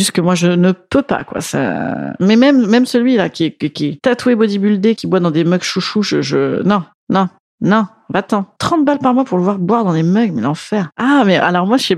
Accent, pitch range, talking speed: French, 170-220 Hz, 235 wpm